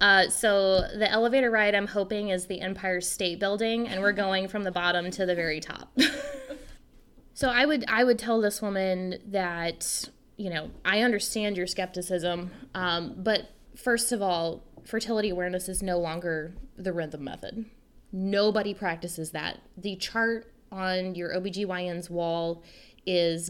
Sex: female